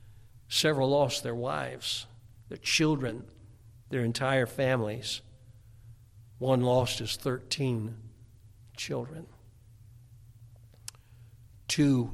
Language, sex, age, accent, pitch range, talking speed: English, male, 60-79, American, 110-125 Hz, 75 wpm